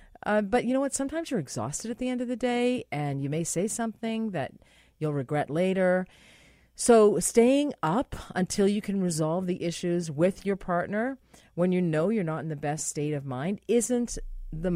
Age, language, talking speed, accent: 40-59, English, 195 wpm, American